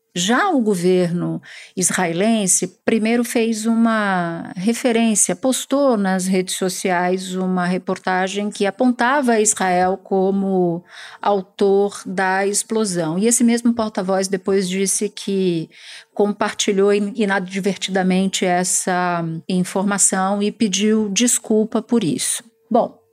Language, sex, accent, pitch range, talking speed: Portuguese, female, Brazilian, 185-230 Hz, 100 wpm